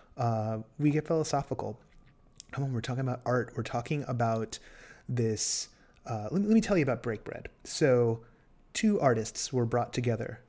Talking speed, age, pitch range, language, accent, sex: 165 wpm, 30-49, 115-140 Hz, English, American, male